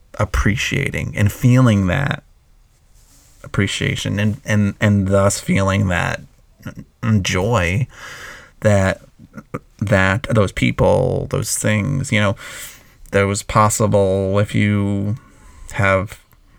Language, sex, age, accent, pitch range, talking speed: English, male, 30-49, American, 100-125 Hz, 90 wpm